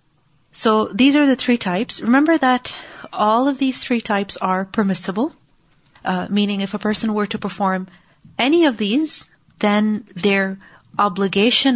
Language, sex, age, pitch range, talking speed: English, female, 30-49, 185-240 Hz, 150 wpm